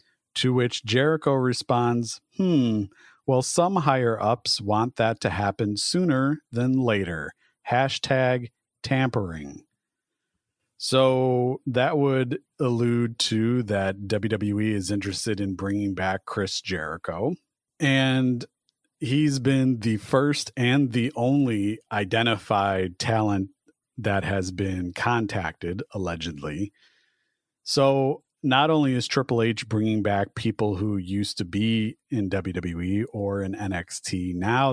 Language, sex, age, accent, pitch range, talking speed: English, male, 40-59, American, 100-130 Hz, 110 wpm